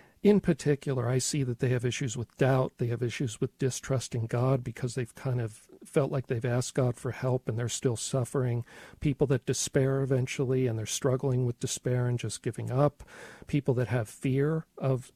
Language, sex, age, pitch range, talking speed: English, male, 50-69, 120-135 Hz, 195 wpm